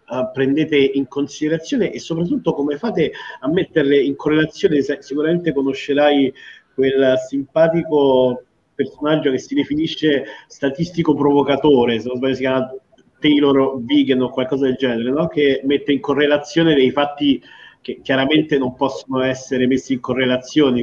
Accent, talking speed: native, 145 wpm